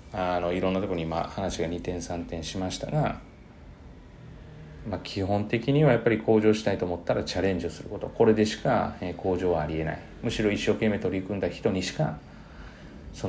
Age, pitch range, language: 30-49, 85-110 Hz, Japanese